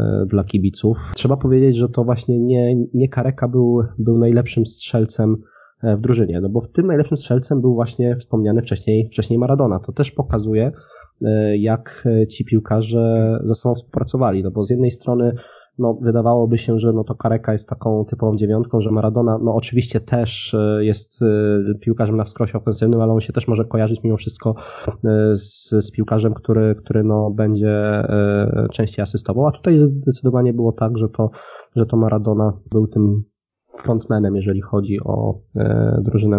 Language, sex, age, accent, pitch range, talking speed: Polish, male, 20-39, native, 105-120 Hz, 160 wpm